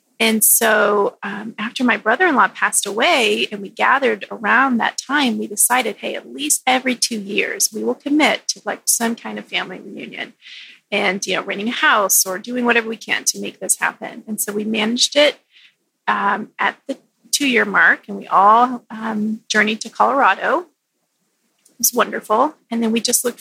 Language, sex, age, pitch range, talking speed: English, female, 30-49, 215-260 Hz, 185 wpm